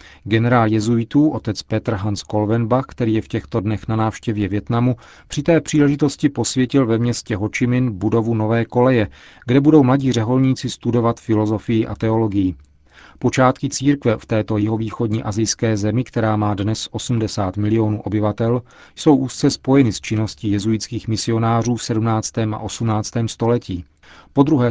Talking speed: 145 wpm